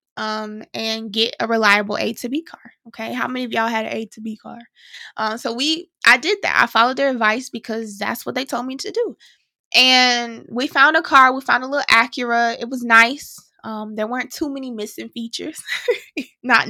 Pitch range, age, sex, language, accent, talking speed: 220-260 Hz, 20-39, female, English, American, 210 wpm